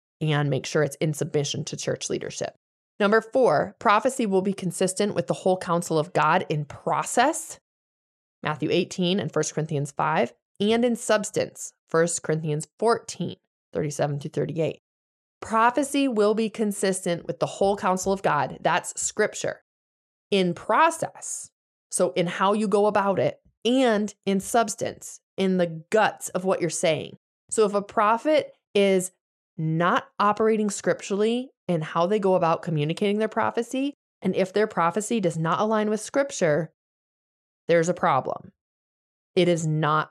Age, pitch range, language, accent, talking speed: 20-39, 155-210 Hz, English, American, 150 wpm